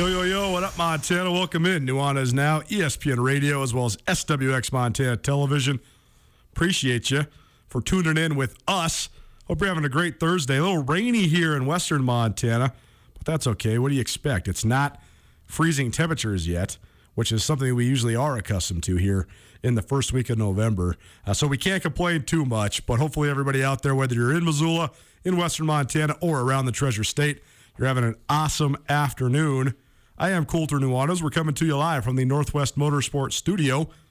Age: 40-59